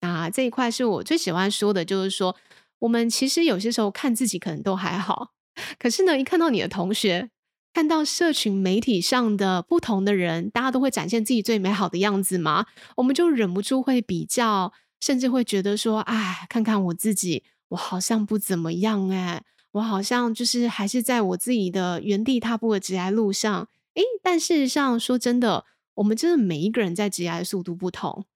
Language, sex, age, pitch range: Chinese, female, 20-39, 190-245 Hz